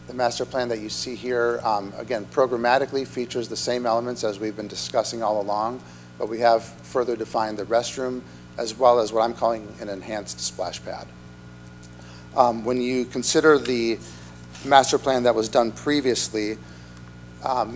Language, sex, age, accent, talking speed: English, male, 40-59, American, 165 wpm